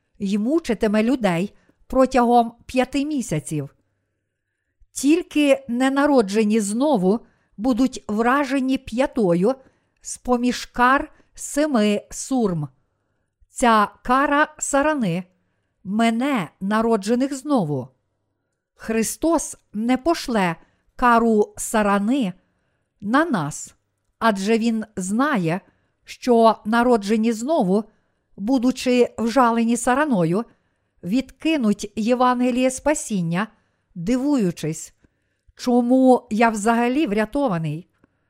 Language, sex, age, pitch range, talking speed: Ukrainian, female, 50-69, 200-260 Hz, 75 wpm